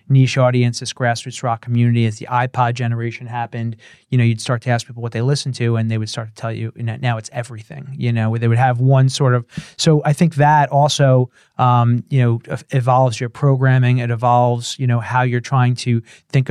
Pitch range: 120-135 Hz